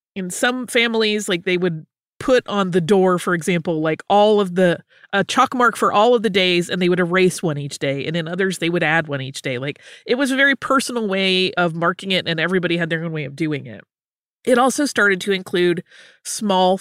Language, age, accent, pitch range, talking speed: English, 30-49, American, 180-235 Hz, 230 wpm